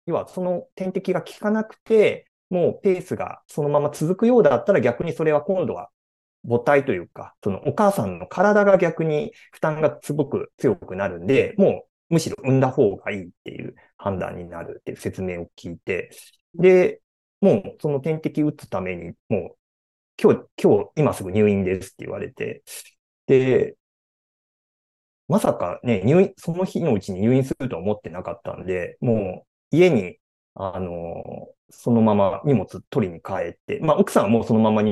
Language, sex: Japanese, male